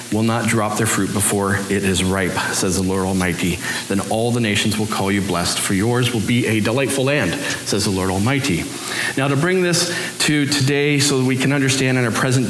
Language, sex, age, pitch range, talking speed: English, male, 40-59, 110-145 Hz, 220 wpm